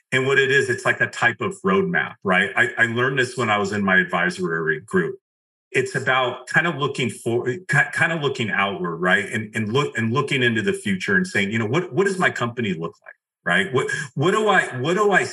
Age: 40-59